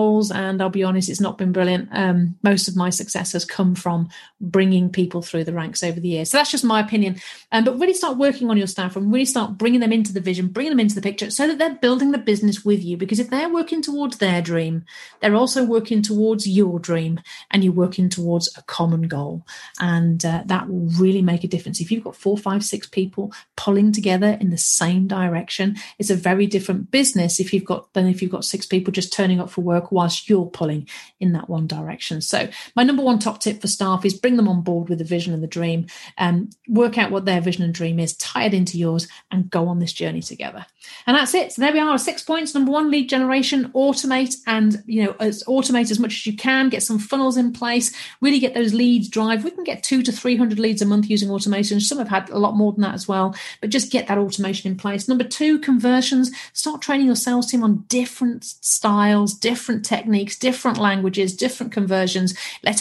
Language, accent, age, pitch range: English, British, 40-59, 185-240 Hz